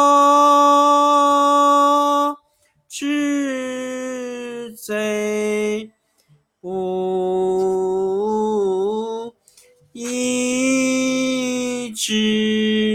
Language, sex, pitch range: Chinese, male, 215-285 Hz